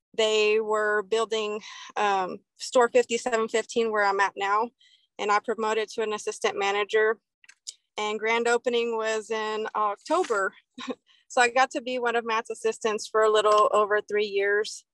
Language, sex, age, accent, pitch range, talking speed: English, female, 30-49, American, 210-240 Hz, 155 wpm